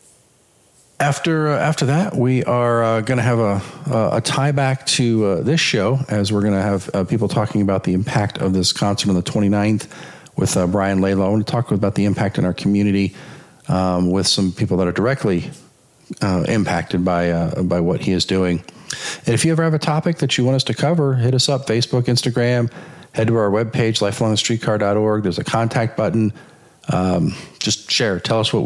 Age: 50-69